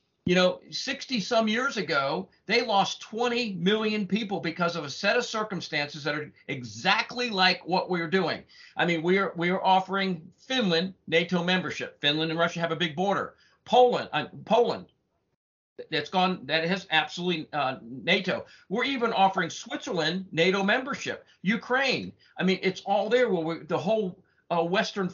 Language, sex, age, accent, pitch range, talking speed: English, male, 50-69, American, 170-225 Hz, 160 wpm